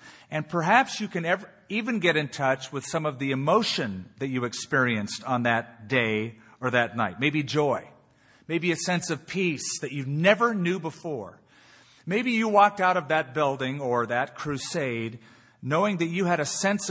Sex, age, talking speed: male, 40-59, 175 wpm